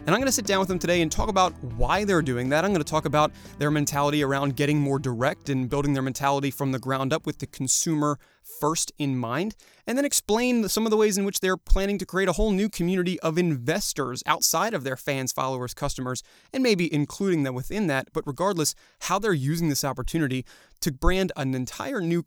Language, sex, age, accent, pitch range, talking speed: English, male, 30-49, American, 145-185 Hz, 225 wpm